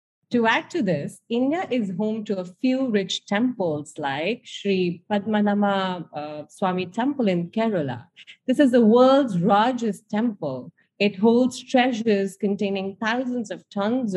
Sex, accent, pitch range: female, Indian, 175-230 Hz